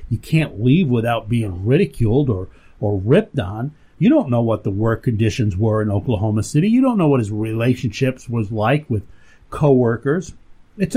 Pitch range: 115-155 Hz